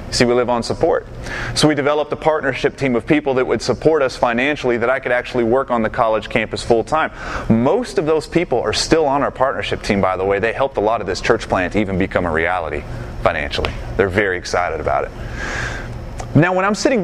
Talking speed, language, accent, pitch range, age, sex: 220 wpm, English, American, 120-175 Hz, 30-49, male